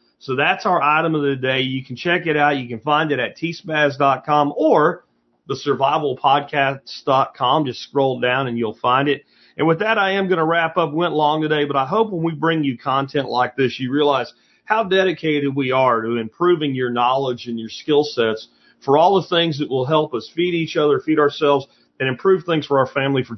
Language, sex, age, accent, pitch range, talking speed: English, male, 40-59, American, 130-165 Hz, 215 wpm